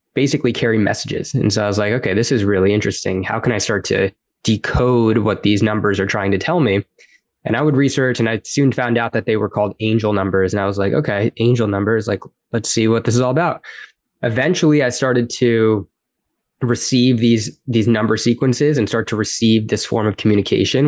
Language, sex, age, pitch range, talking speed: English, male, 20-39, 105-130 Hz, 215 wpm